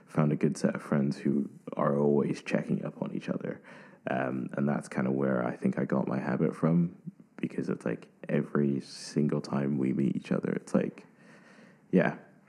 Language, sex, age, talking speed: English, male, 20-39, 190 wpm